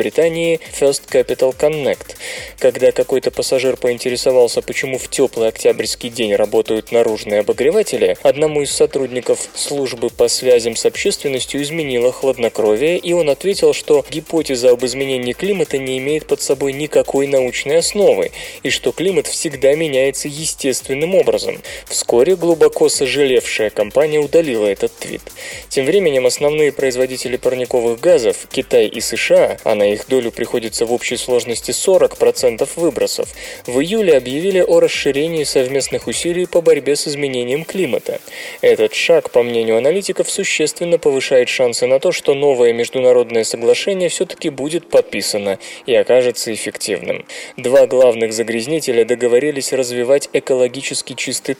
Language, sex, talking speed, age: Russian, male, 135 wpm, 20-39